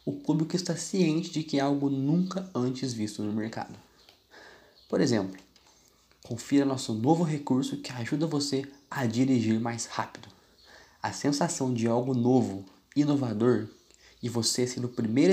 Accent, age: Brazilian, 20-39